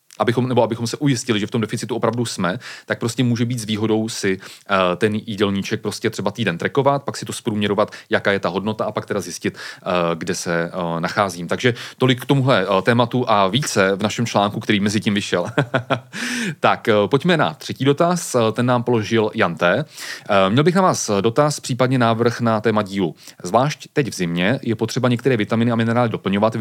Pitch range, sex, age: 105-125 Hz, male, 30-49